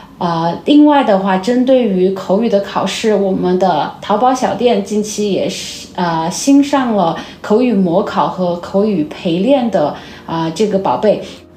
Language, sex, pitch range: Chinese, female, 185-245 Hz